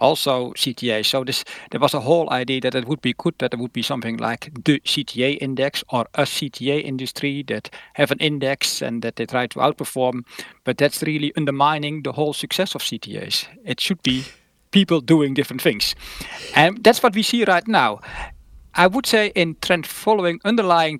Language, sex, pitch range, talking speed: English, male, 125-155 Hz, 190 wpm